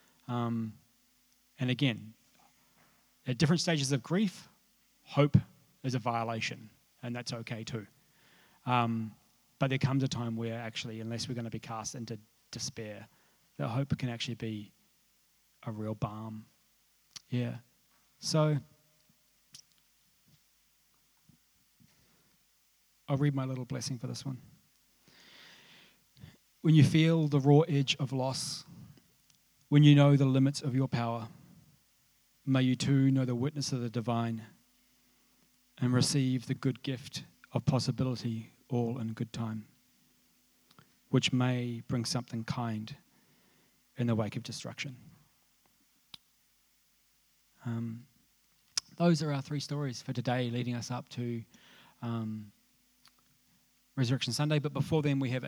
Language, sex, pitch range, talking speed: English, male, 120-145 Hz, 125 wpm